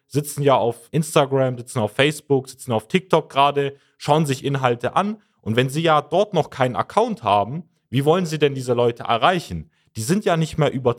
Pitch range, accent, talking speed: 110-150 Hz, German, 200 wpm